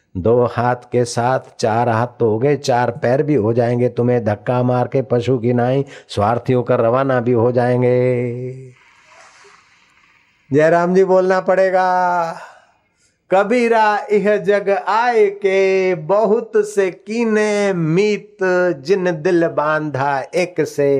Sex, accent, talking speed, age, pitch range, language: male, native, 130 wpm, 50-69, 120-155 Hz, Hindi